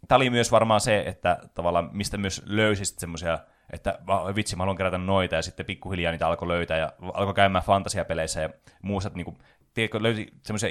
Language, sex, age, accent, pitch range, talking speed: Finnish, male, 20-39, native, 90-120 Hz, 185 wpm